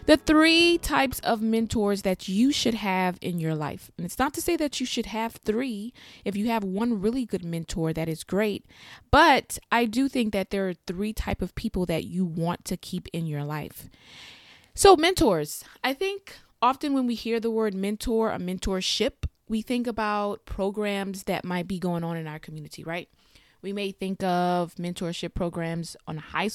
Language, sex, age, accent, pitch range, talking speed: English, female, 20-39, American, 175-225 Hz, 195 wpm